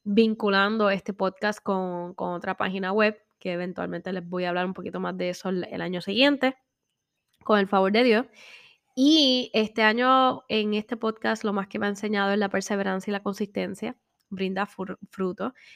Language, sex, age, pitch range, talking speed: Spanish, female, 10-29, 190-215 Hz, 180 wpm